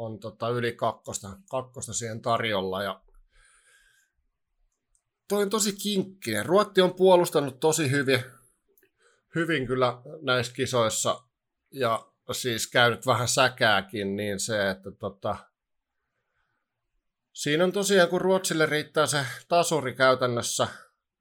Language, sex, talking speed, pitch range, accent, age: Finnish, male, 105 wpm, 115-155 Hz, native, 60-79